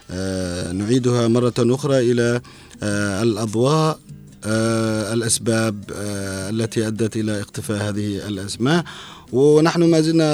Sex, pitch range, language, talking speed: male, 105-125 Hz, Arabic, 110 wpm